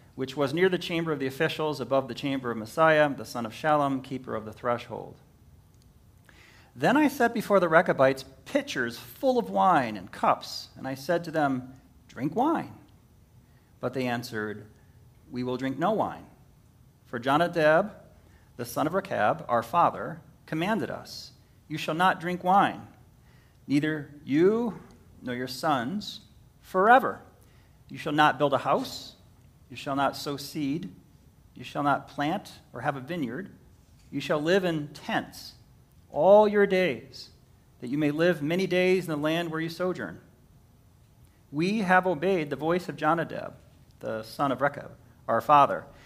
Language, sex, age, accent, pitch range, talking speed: English, male, 40-59, American, 125-180 Hz, 160 wpm